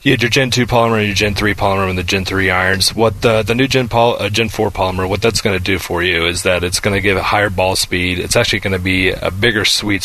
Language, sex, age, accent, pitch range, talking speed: English, male, 30-49, American, 95-110 Hz, 305 wpm